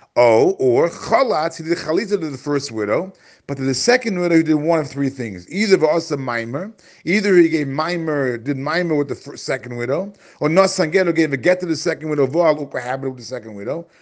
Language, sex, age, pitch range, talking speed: English, male, 40-59, 135-180 Hz, 225 wpm